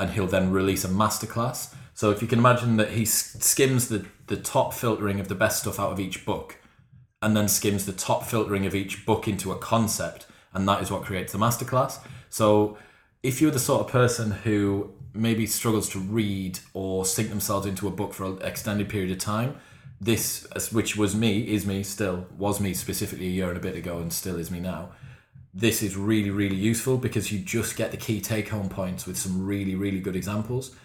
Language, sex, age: English, male, 30-49